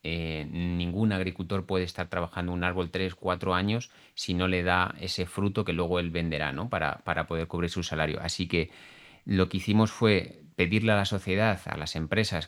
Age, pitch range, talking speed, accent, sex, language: 30-49, 85-100 Hz, 190 wpm, Spanish, male, Spanish